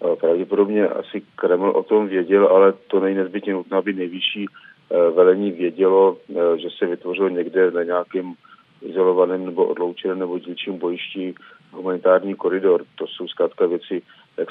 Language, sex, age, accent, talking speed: Czech, male, 40-59, native, 135 wpm